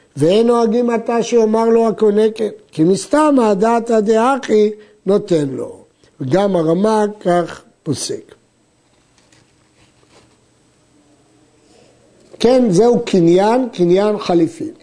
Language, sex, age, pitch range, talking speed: Hebrew, male, 60-79, 180-240 Hz, 90 wpm